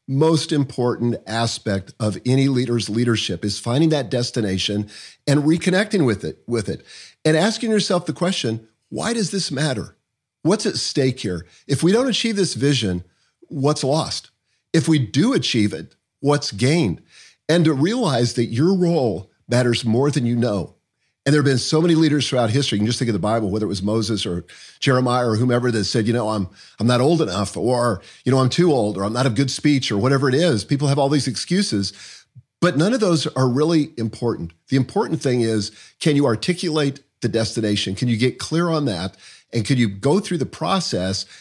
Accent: American